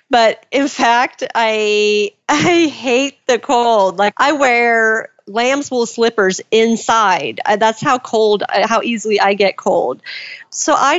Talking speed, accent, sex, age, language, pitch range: 130 wpm, American, female, 40-59, English, 205-260 Hz